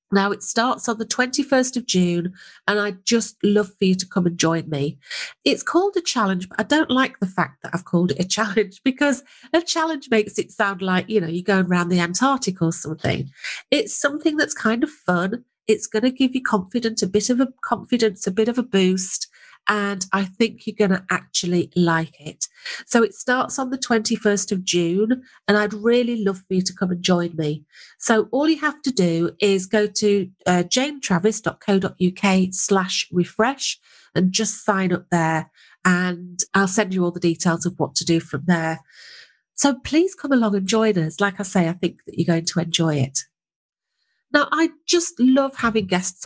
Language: English